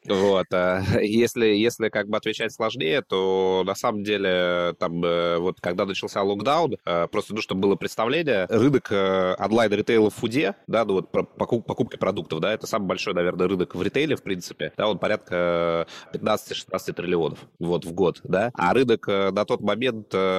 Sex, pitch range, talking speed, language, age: male, 85-105 Hz, 160 wpm, Russian, 20-39